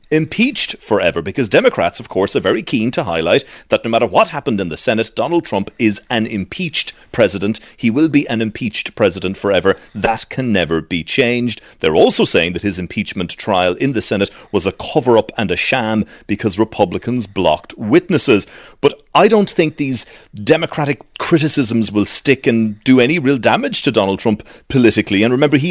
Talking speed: 185 wpm